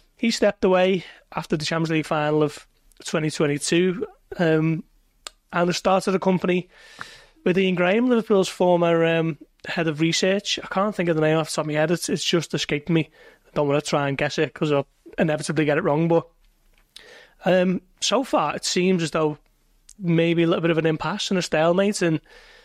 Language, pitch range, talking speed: English, 155-190 Hz, 200 wpm